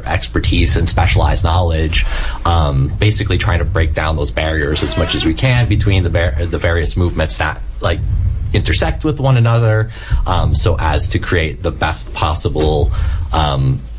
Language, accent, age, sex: English, American, 30-49, male